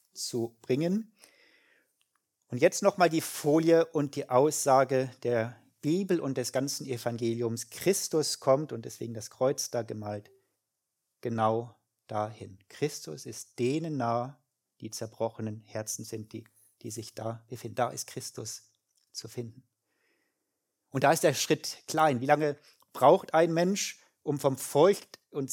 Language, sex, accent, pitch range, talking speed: German, male, German, 120-150 Hz, 140 wpm